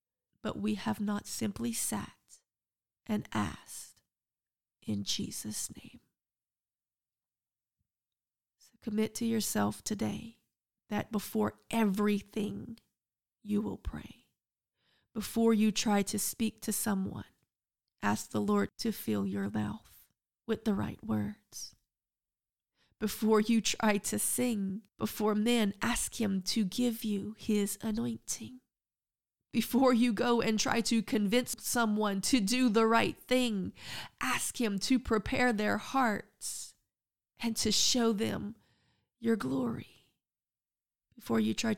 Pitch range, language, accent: 195-230 Hz, English, American